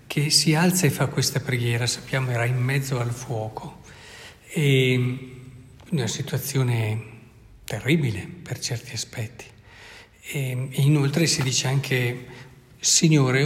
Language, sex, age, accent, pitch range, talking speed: Italian, male, 50-69, native, 125-155 Hz, 115 wpm